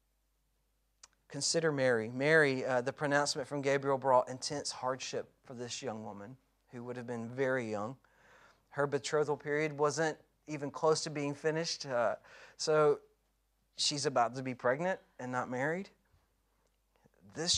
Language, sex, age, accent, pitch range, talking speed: English, male, 40-59, American, 125-160 Hz, 140 wpm